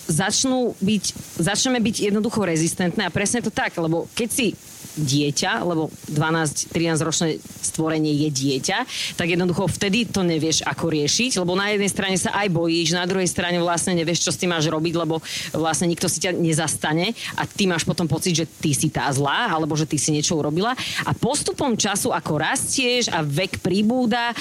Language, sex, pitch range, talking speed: Slovak, female, 160-205 Hz, 180 wpm